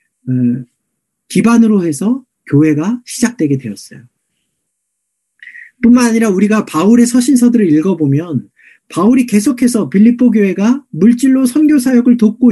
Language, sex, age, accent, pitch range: Korean, male, 40-59, native, 180-245 Hz